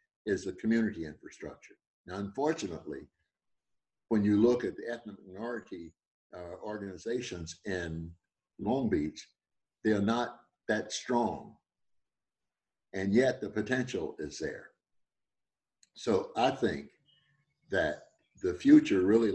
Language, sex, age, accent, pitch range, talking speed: English, male, 60-79, American, 85-115 Hz, 110 wpm